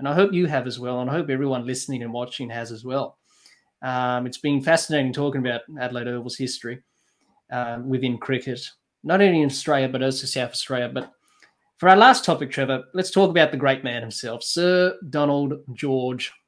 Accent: Australian